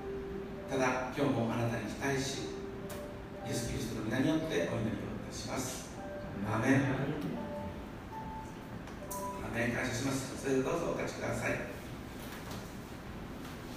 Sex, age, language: male, 60-79, Japanese